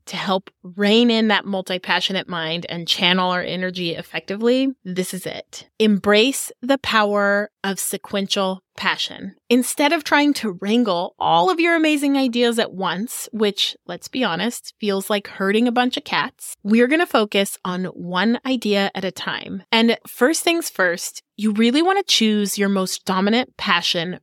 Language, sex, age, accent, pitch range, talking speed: English, female, 20-39, American, 185-240 Hz, 160 wpm